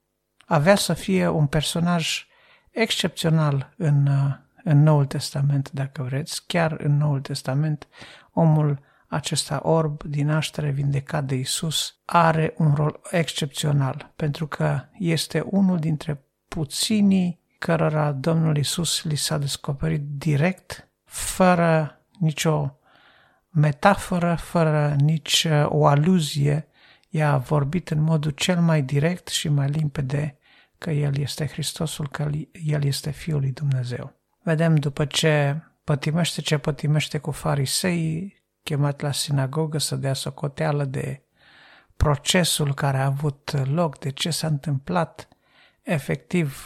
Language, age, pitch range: Romanian, 50-69, 140-160 Hz